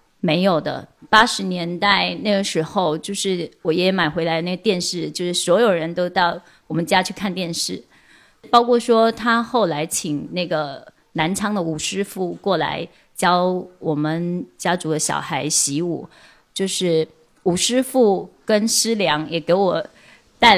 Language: Chinese